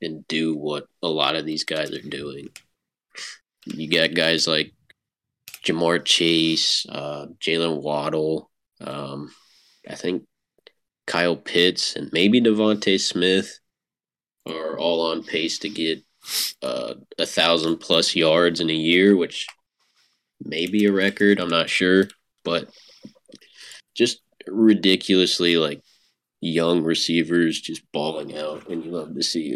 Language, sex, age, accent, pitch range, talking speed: English, male, 20-39, American, 80-95 Hz, 130 wpm